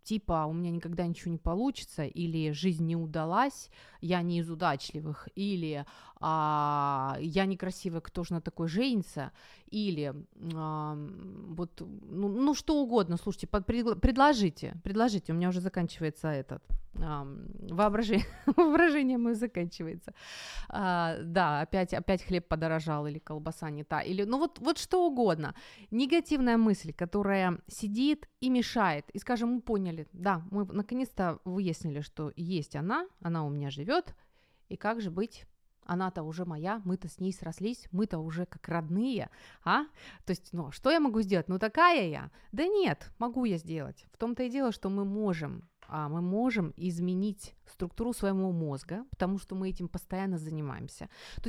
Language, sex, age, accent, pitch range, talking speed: Ukrainian, female, 30-49, native, 165-230 Hz, 150 wpm